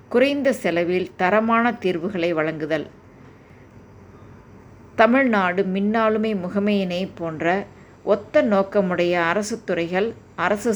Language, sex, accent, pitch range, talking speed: Tamil, female, native, 180-220 Hz, 80 wpm